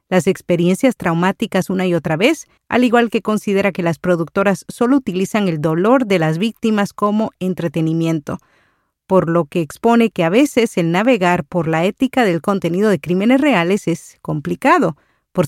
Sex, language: female, Spanish